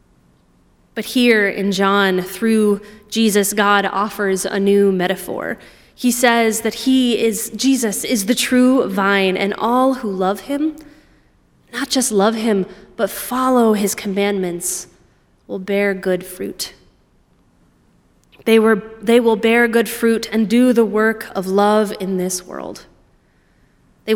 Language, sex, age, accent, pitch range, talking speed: English, female, 20-39, American, 185-220 Hz, 135 wpm